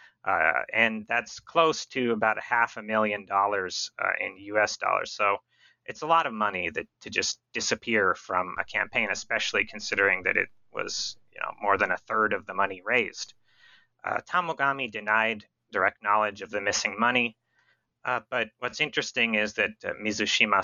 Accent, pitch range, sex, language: American, 105-120 Hz, male, English